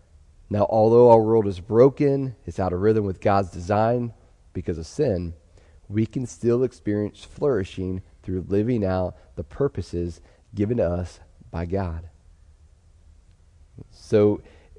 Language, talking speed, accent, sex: English, 130 wpm, American, male